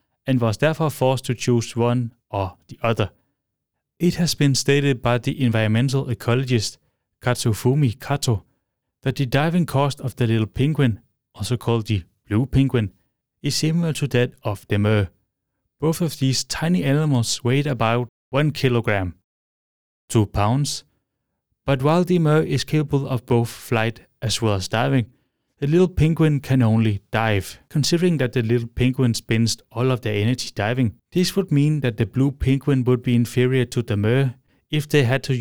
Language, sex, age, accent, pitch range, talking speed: English, male, 30-49, Danish, 110-140 Hz, 165 wpm